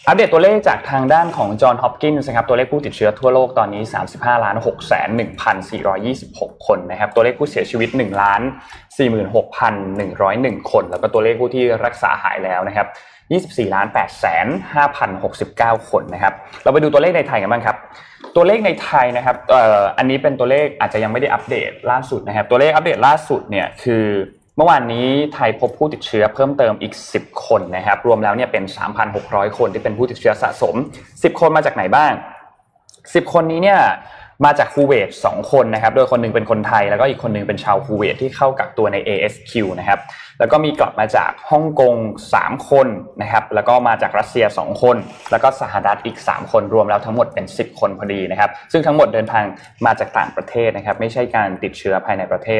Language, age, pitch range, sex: Thai, 20-39, 110-145 Hz, male